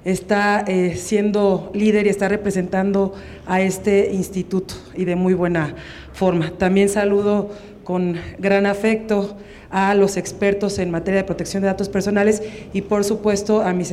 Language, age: Spanish, 40-59